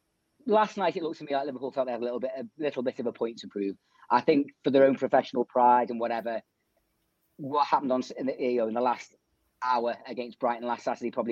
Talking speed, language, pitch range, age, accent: 250 wpm, English, 120-145 Hz, 30-49, British